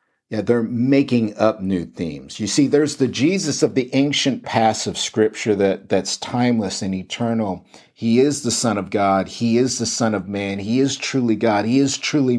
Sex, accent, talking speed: male, American, 200 wpm